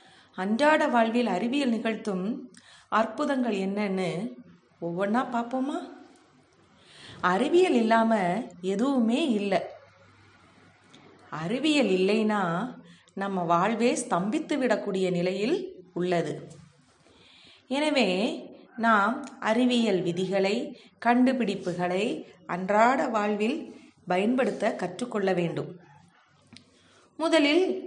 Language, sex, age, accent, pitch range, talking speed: Tamil, female, 30-49, native, 185-250 Hz, 65 wpm